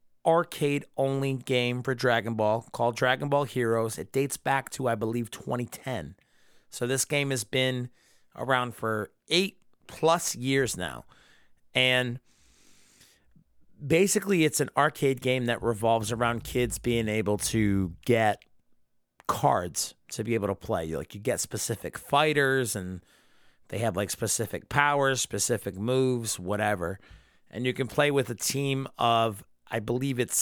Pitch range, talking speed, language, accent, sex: 110-140 Hz, 145 wpm, English, American, male